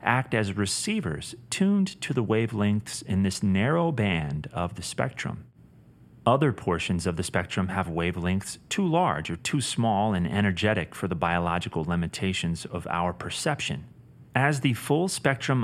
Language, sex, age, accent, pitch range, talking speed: English, male, 30-49, American, 90-125 Hz, 150 wpm